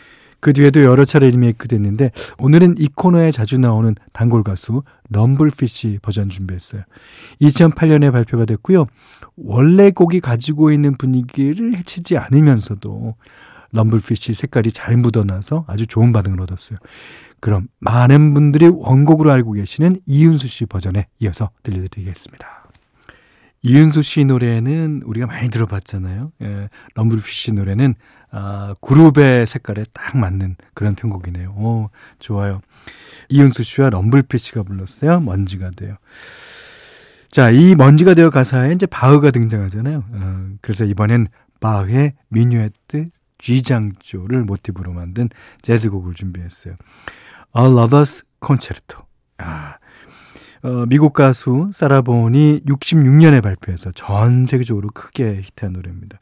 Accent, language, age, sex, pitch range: native, Korean, 40-59, male, 105-140 Hz